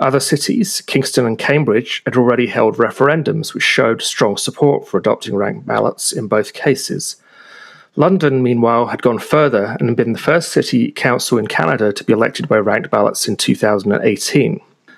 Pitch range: 120-150 Hz